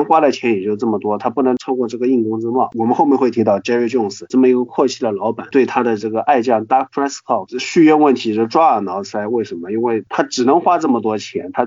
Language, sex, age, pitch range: Chinese, male, 20-39, 115-145 Hz